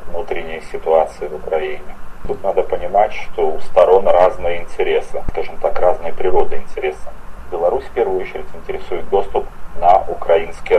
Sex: male